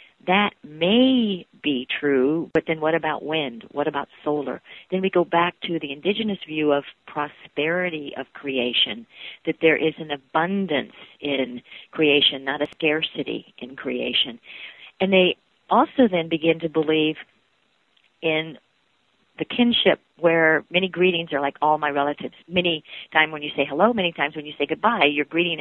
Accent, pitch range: American, 145-175 Hz